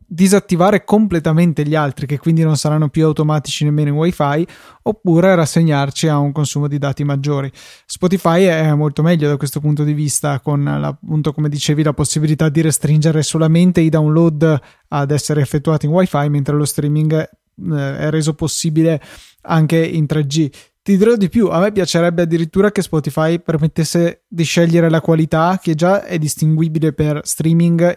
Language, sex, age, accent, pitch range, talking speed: Italian, male, 20-39, native, 155-175 Hz, 165 wpm